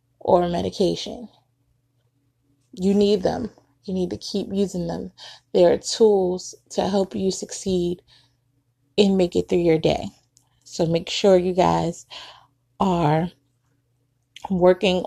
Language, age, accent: English, 20-39, American